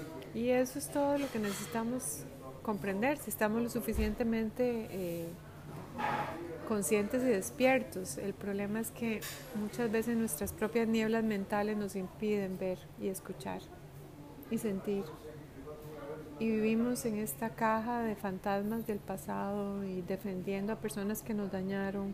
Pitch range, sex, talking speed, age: 185-220 Hz, female, 135 wpm, 30-49